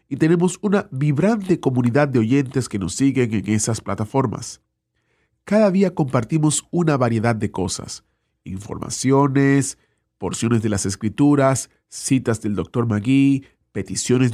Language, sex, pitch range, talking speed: Spanish, male, 110-145 Hz, 125 wpm